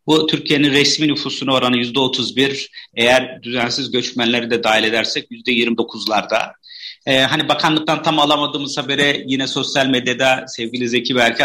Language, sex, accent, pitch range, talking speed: Turkish, male, native, 120-155 Hz, 130 wpm